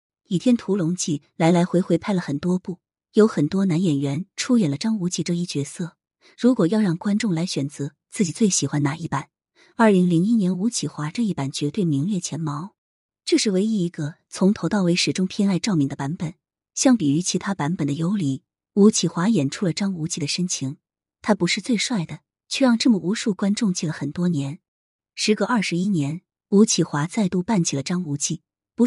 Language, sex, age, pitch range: Chinese, female, 30-49, 155-210 Hz